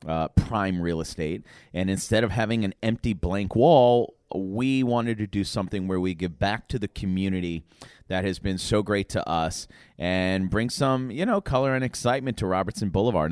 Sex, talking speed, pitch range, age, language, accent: male, 190 wpm, 90-115 Hz, 30-49, English, American